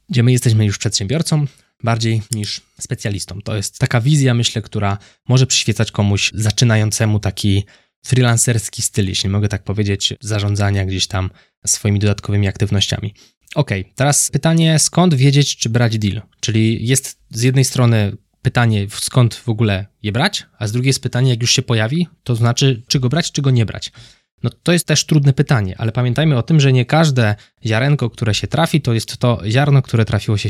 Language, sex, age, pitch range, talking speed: Polish, male, 20-39, 105-135 Hz, 180 wpm